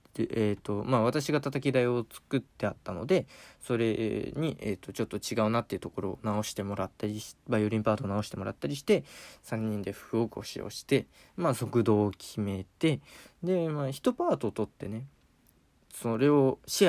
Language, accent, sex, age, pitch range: Japanese, native, male, 20-39, 105-135 Hz